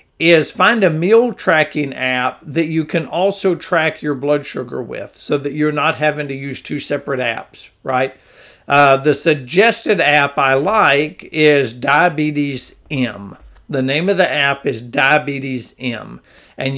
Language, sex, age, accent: English, male, 50-69, American